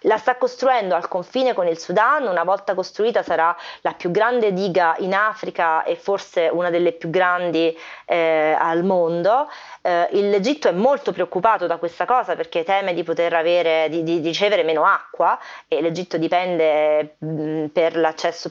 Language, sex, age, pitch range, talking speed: Italian, female, 30-49, 170-195 Hz, 155 wpm